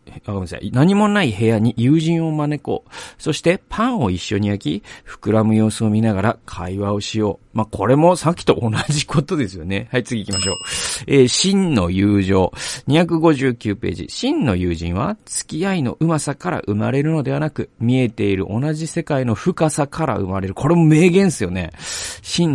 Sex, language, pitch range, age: male, Japanese, 95-150 Hz, 40-59